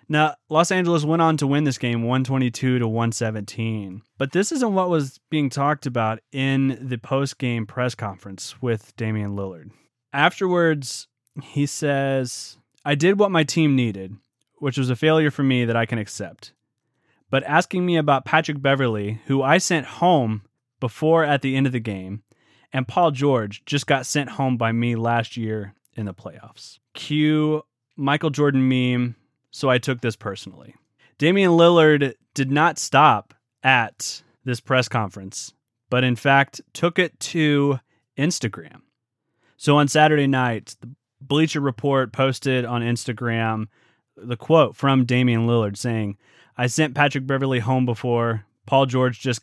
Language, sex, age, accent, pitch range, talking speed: English, male, 20-39, American, 115-145 Hz, 155 wpm